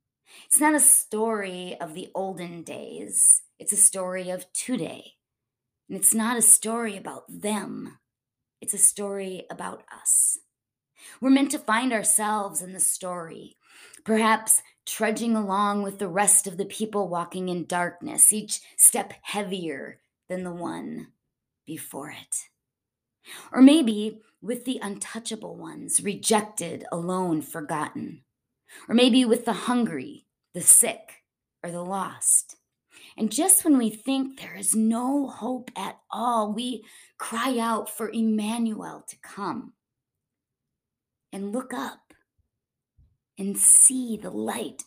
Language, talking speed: English, 130 wpm